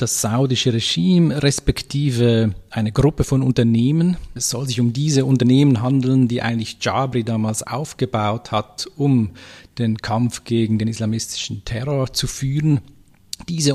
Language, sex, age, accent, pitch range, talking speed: German, male, 40-59, Austrian, 110-135 Hz, 135 wpm